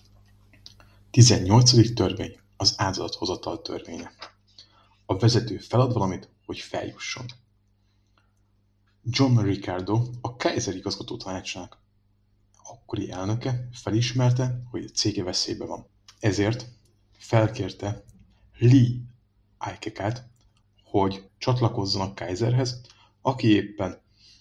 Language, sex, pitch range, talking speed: Hungarian, male, 100-110 Hz, 85 wpm